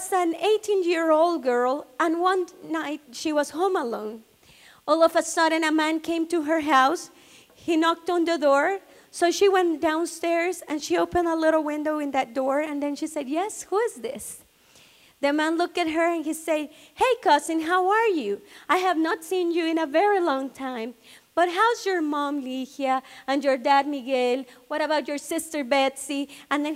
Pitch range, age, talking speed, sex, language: 275-350 Hz, 30-49, 195 wpm, female, English